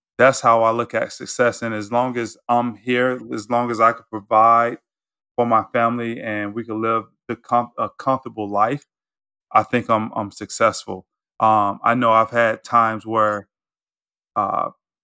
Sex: male